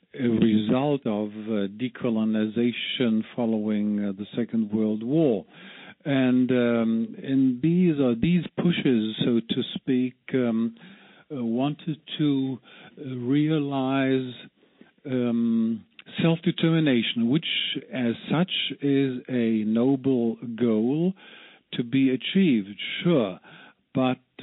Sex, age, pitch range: male, 50-69, 110-135 Hz